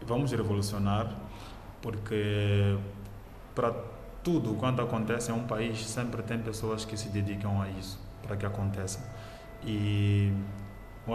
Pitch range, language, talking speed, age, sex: 105-130 Hz, Portuguese, 125 wpm, 20-39, male